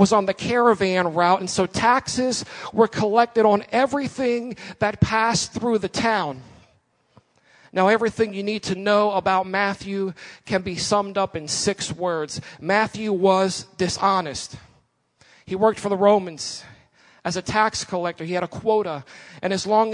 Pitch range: 190-220 Hz